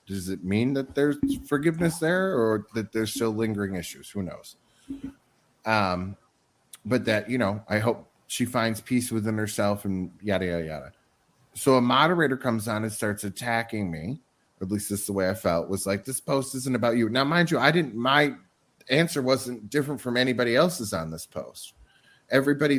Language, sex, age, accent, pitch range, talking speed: English, male, 30-49, American, 105-135 Hz, 185 wpm